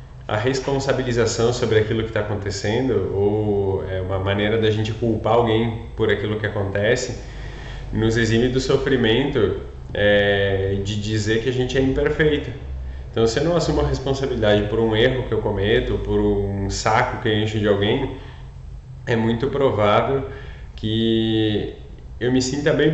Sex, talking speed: male, 155 wpm